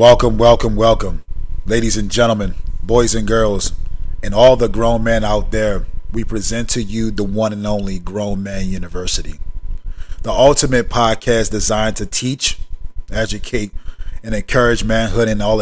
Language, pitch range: English, 90-115 Hz